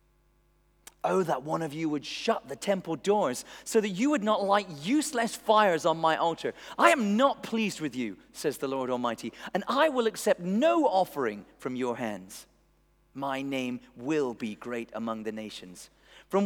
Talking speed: 180 wpm